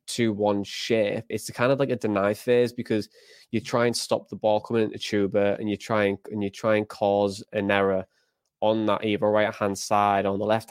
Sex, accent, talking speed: male, British, 225 wpm